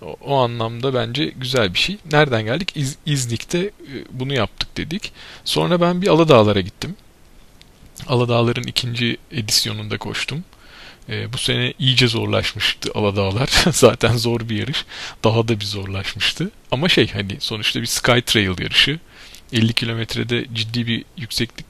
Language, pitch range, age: Turkish, 110-135 Hz, 40-59